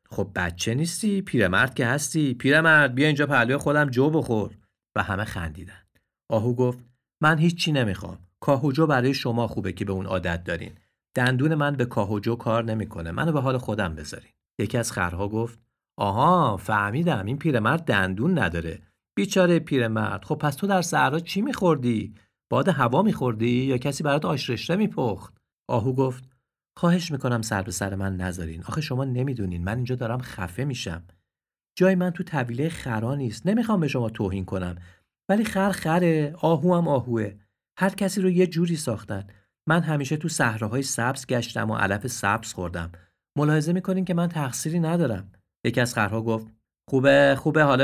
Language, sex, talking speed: Persian, male, 165 wpm